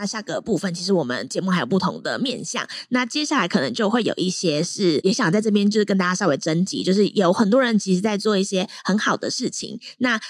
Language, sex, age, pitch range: Chinese, female, 20-39, 180-240 Hz